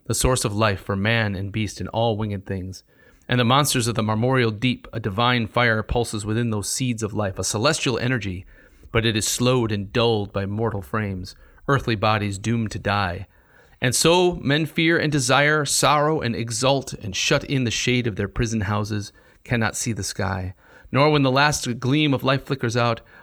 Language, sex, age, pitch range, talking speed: English, male, 30-49, 110-135 Hz, 195 wpm